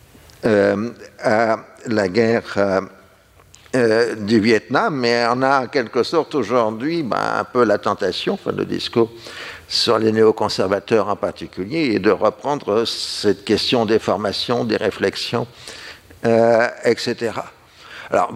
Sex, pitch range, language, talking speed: male, 95-110 Hz, French, 125 wpm